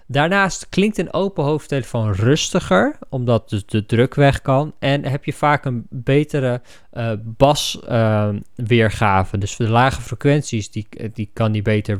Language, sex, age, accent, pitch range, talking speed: Dutch, male, 20-39, Dutch, 110-130 Hz, 150 wpm